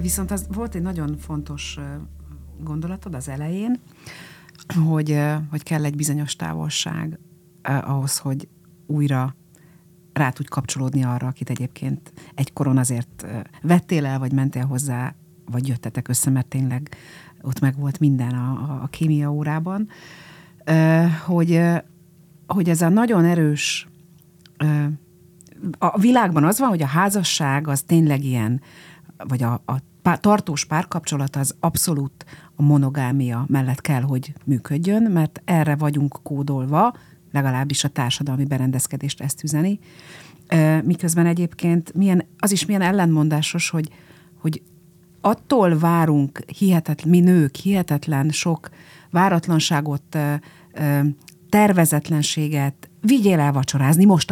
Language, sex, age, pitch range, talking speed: Hungarian, female, 50-69, 140-170 Hz, 115 wpm